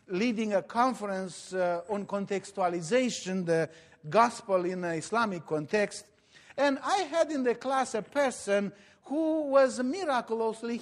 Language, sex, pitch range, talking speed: English, male, 200-270 Hz, 130 wpm